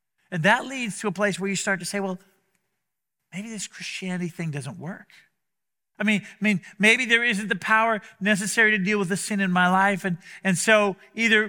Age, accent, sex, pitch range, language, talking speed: 50-69, American, male, 175-215 Hz, English, 210 wpm